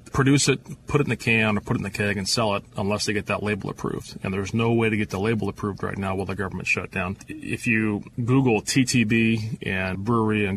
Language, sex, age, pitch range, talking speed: English, male, 30-49, 105-120 Hz, 255 wpm